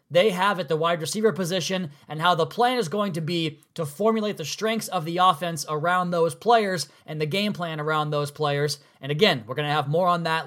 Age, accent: 20-39, American